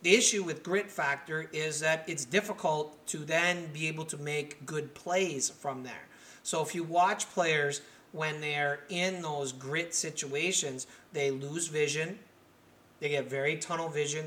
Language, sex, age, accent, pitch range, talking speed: English, male, 30-49, American, 140-170 Hz, 155 wpm